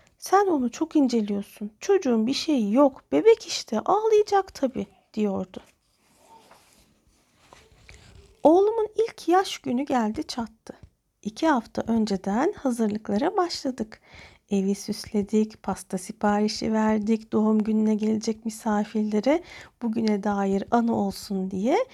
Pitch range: 220-315 Hz